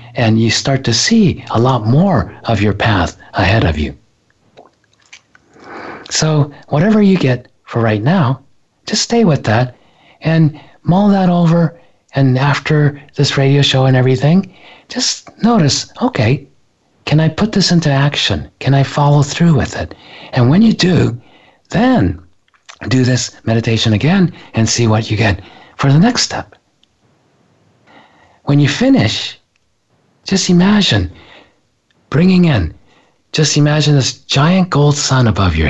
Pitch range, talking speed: 115-155 Hz, 140 wpm